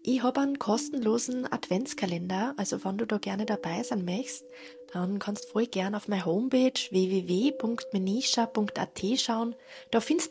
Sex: female